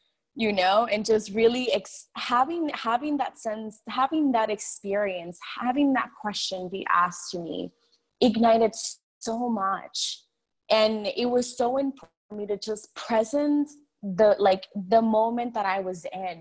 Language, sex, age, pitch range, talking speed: English, female, 20-39, 195-245 Hz, 150 wpm